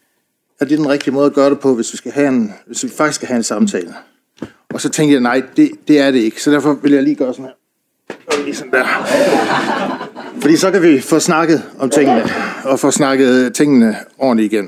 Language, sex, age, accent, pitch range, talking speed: Danish, male, 60-79, native, 130-170 Hz, 235 wpm